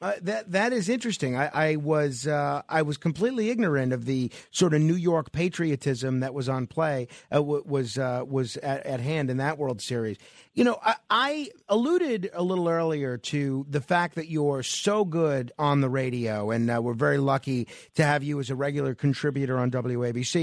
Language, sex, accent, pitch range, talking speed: English, male, American, 135-185 Hz, 195 wpm